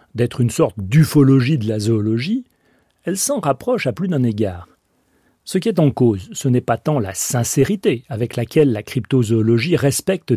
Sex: male